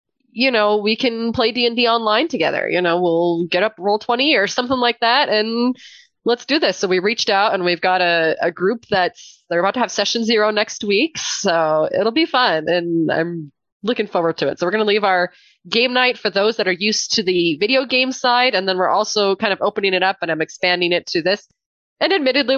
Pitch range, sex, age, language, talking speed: 185-245 Hz, female, 20-39, English, 235 wpm